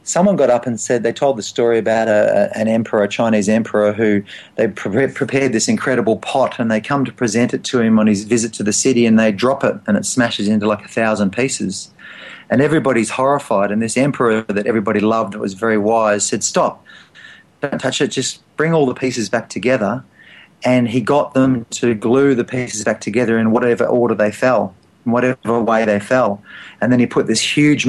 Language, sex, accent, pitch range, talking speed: English, male, Australian, 105-125 Hz, 215 wpm